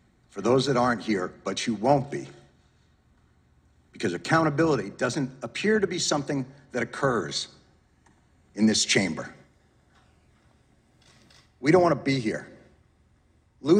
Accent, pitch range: American, 125-170 Hz